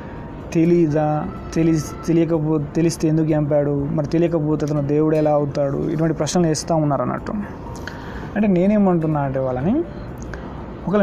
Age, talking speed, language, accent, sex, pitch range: 30-49, 115 wpm, Telugu, native, male, 140-170 Hz